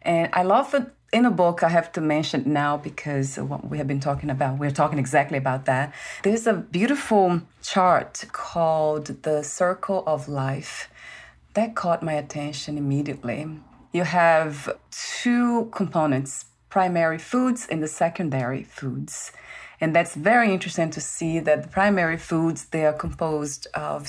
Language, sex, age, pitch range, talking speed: English, female, 30-49, 150-180 Hz, 155 wpm